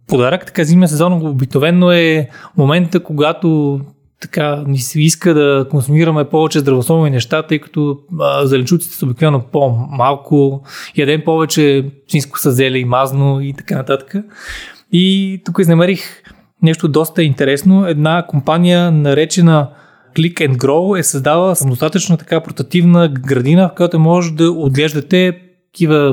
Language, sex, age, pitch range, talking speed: Bulgarian, male, 20-39, 140-175 Hz, 135 wpm